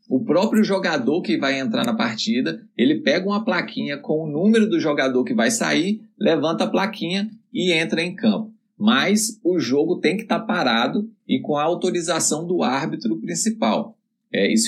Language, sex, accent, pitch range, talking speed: Portuguese, male, Brazilian, 150-225 Hz, 170 wpm